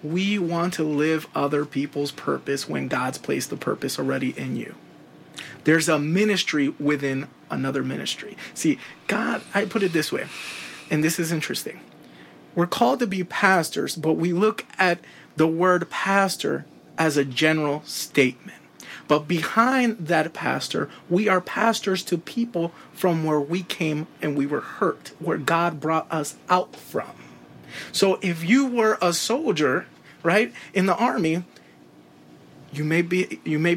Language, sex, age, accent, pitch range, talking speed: Spanish, male, 30-49, American, 150-185 Hz, 155 wpm